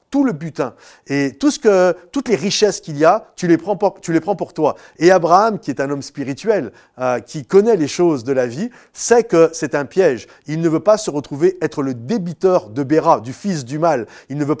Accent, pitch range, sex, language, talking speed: French, 145-195 Hz, male, French, 245 wpm